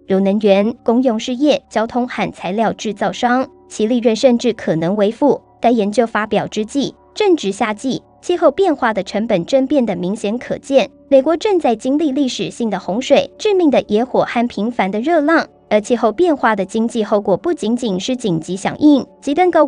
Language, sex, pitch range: Chinese, male, 205-265 Hz